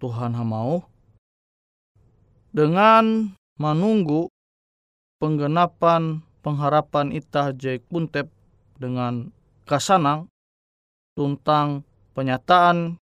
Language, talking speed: Indonesian, 60 wpm